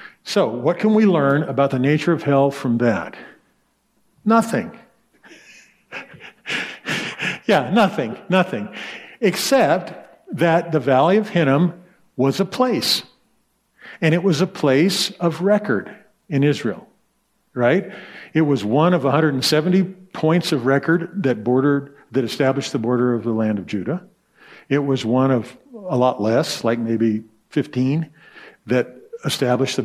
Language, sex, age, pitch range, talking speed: English, male, 50-69, 125-175 Hz, 135 wpm